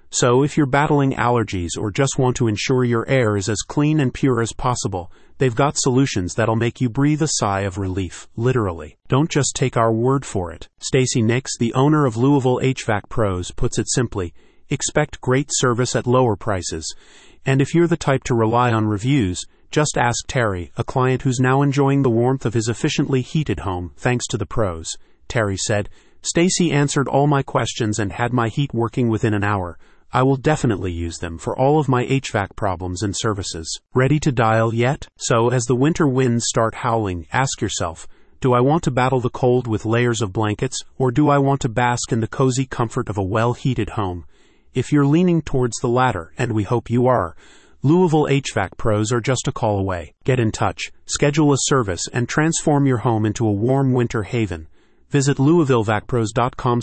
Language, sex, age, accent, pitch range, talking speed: English, male, 40-59, American, 110-135 Hz, 195 wpm